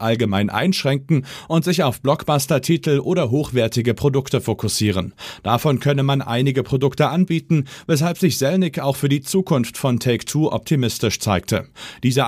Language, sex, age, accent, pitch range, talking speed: German, male, 40-59, German, 115-155 Hz, 135 wpm